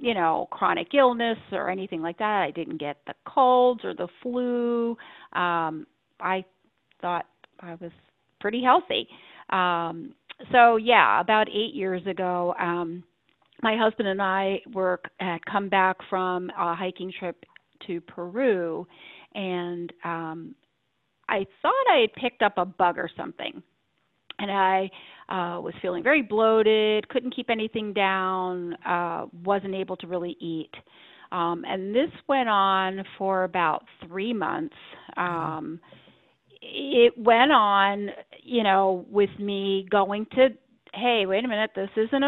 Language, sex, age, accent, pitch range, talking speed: English, female, 40-59, American, 180-225 Hz, 140 wpm